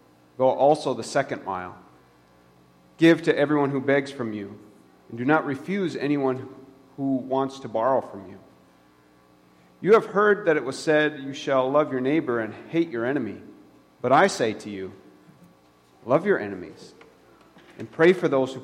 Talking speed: 165 wpm